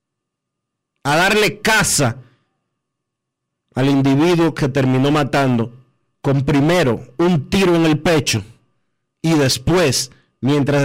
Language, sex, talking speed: Spanish, male, 100 wpm